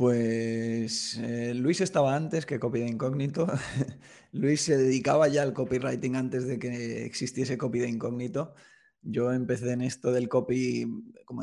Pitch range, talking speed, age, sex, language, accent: 120-135 Hz, 150 wpm, 20-39, male, Spanish, Spanish